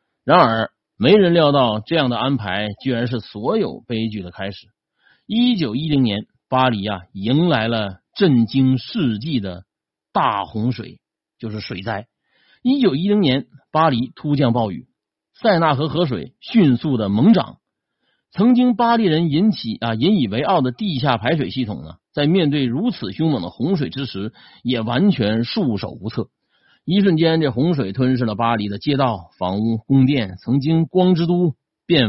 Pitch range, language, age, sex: 110-165 Hz, Chinese, 50-69, male